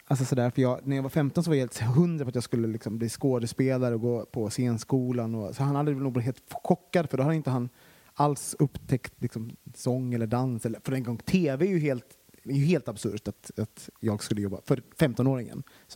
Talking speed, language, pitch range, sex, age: 230 wpm, Swedish, 120-150 Hz, male, 30-49